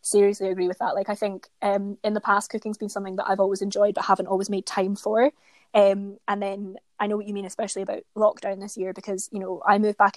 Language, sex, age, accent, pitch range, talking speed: English, female, 20-39, British, 195-210 Hz, 255 wpm